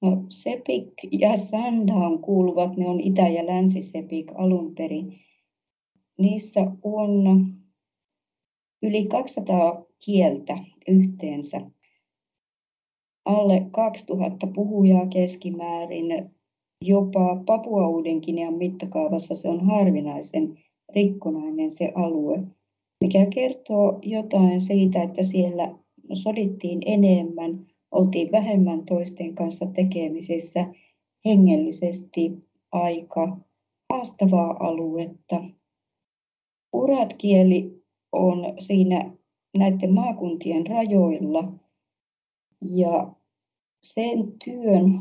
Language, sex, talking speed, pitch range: Finnish, female, 75 wpm, 175-200 Hz